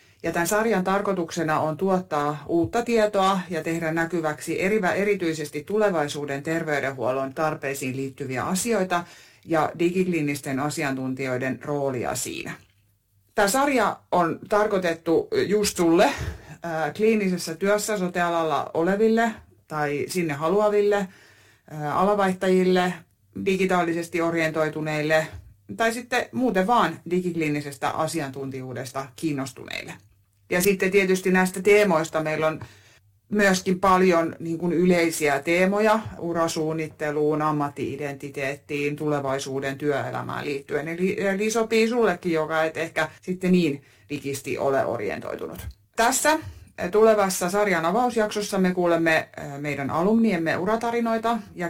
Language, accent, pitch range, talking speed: Finnish, native, 145-195 Hz, 95 wpm